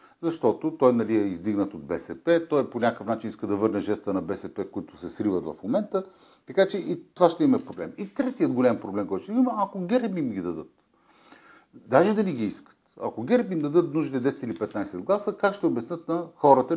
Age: 50-69